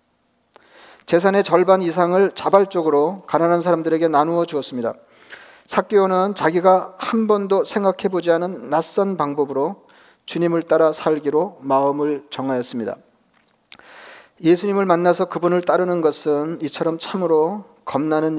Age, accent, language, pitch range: 40-59, native, Korean, 160-195 Hz